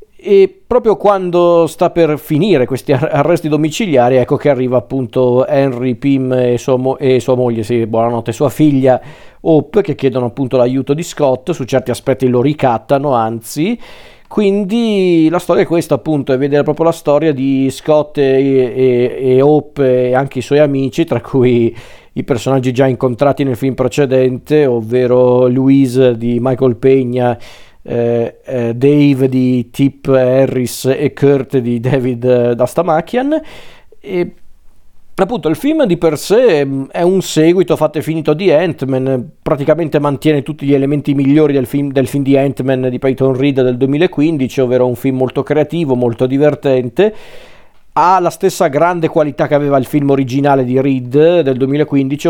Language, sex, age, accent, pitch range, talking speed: Italian, male, 40-59, native, 130-155 Hz, 155 wpm